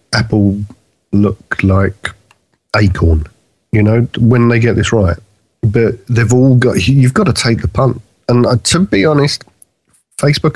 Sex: male